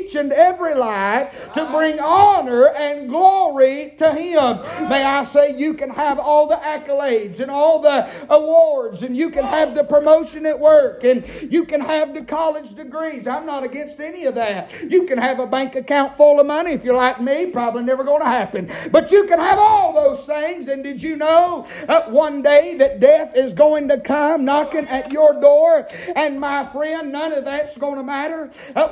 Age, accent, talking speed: 60-79, American, 200 wpm